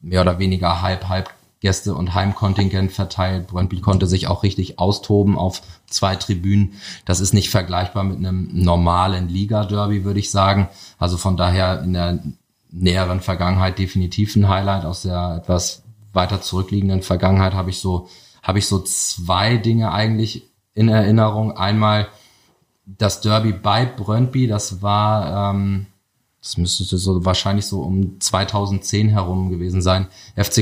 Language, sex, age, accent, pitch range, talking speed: German, male, 30-49, German, 95-105 Hz, 145 wpm